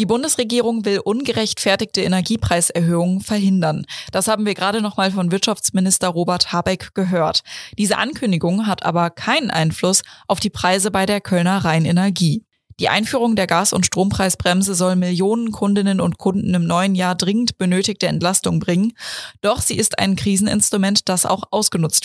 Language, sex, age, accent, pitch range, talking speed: German, female, 20-39, German, 180-215 Hz, 150 wpm